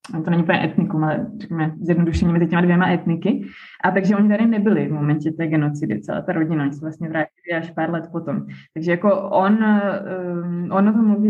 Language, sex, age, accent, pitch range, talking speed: Czech, female, 20-39, native, 170-200 Hz, 200 wpm